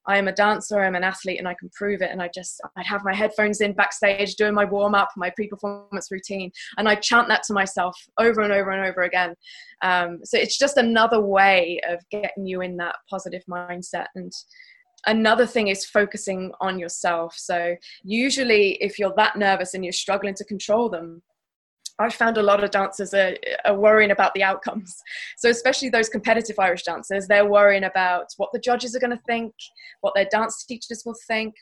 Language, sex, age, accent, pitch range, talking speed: English, female, 20-39, British, 190-230 Hz, 200 wpm